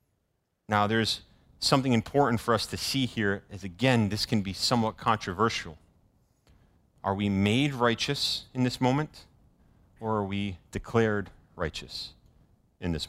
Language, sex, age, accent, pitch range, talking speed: English, male, 40-59, American, 100-135 Hz, 140 wpm